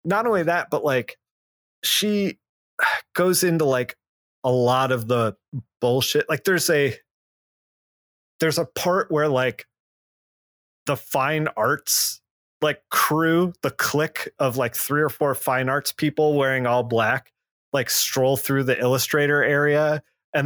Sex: male